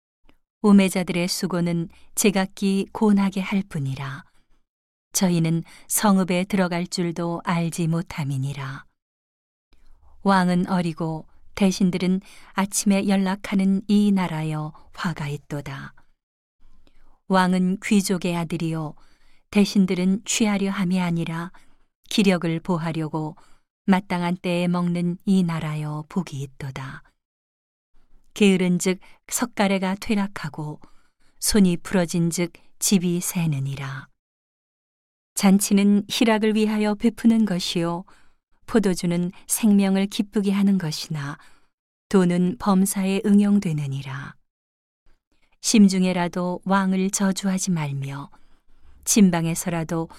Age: 40-59